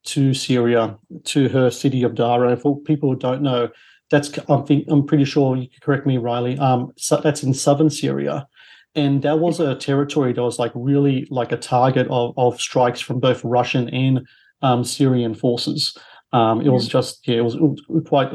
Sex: male